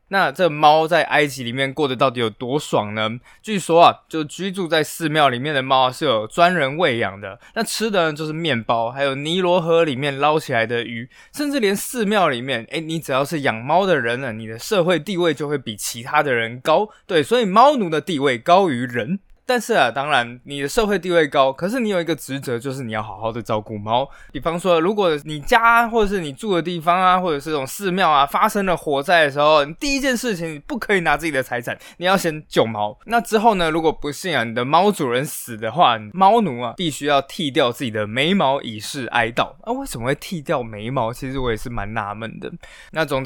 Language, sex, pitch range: Chinese, male, 125-185 Hz